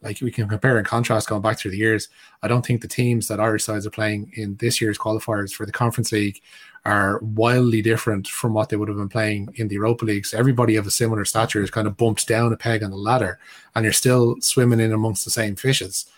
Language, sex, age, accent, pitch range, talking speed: English, male, 20-39, Irish, 110-125 Hz, 250 wpm